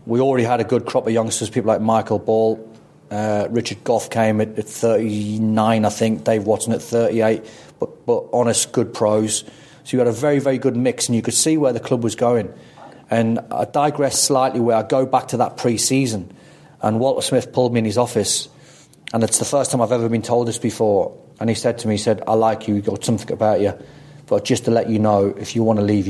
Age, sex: 30-49, male